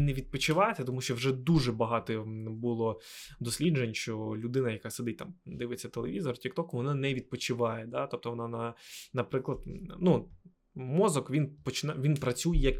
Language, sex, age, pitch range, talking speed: Ukrainian, male, 20-39, 125-170 Hz, 150 wpm